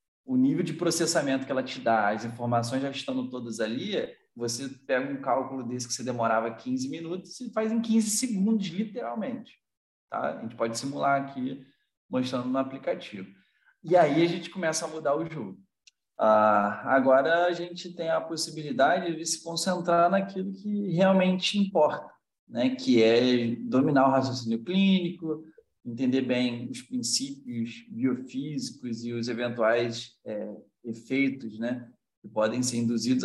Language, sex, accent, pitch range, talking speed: Portuguese, male, Brazilian, 115-165 Hz, 150 wpm